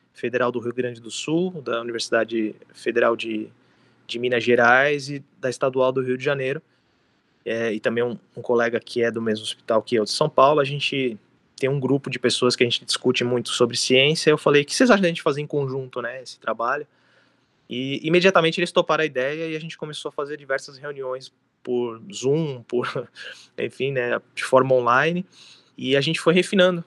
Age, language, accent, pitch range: 20-39, Portuguese, Brazilian, 120-145 Hz